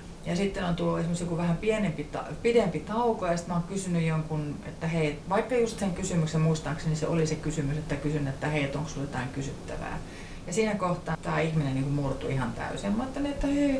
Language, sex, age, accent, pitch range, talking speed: Finnish, female, 30-49, native, 150-220 Hz, 220 wpm